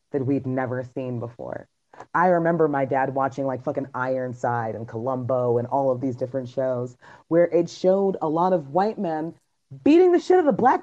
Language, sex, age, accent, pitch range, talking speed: English, female, 30-49, American, 140-220 Hz, 195 wpm